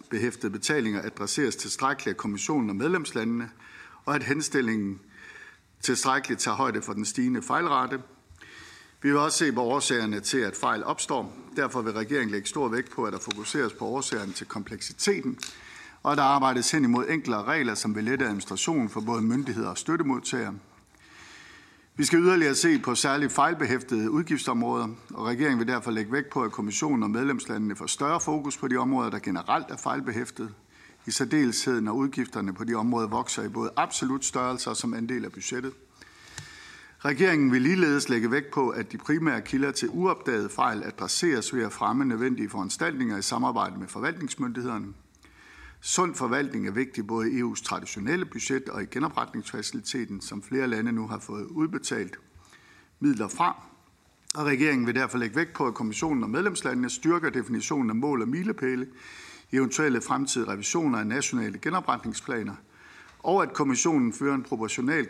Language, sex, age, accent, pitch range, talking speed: Danish, male, 60-79, native, 110-145 Hz, 165 wpm